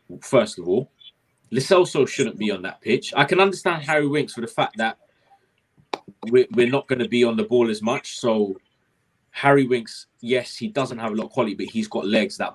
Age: 20-39